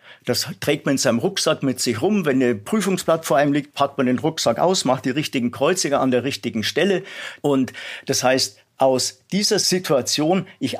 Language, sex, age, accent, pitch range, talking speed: German, male, 50-69, German, 125-175 Hz, 195 wpm